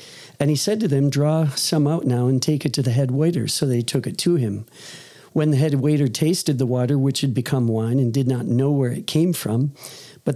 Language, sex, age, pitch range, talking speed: English, male, 50-69, 130-160 Hz, 245 wpm